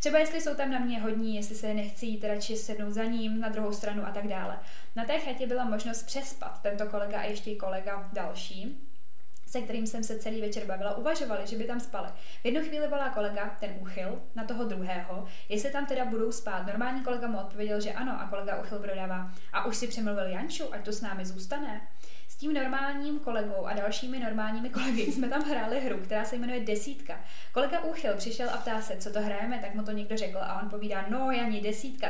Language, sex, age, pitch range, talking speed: Czech, female, 20-39, 205-245 Hz, 215 wpm